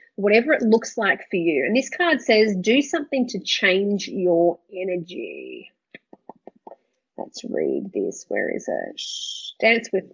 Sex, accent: female, Australian